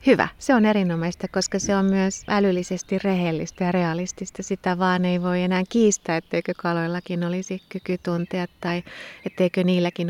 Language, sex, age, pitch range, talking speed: Finnish, female, 30-49, 170-190 Hz, 155 wpm